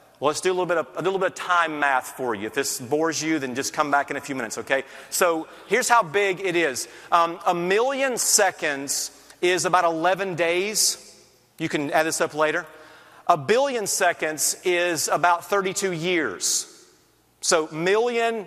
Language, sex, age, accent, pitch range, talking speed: English, male, 40-59, American, 170-225 Hz, 185 wpm